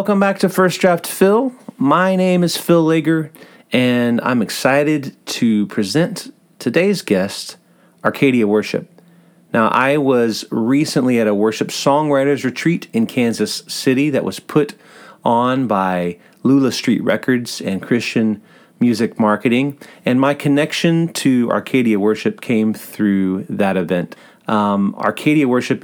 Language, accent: English, American